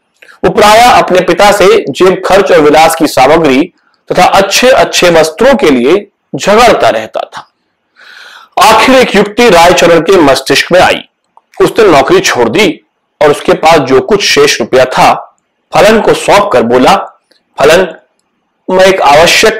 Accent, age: native, 40-59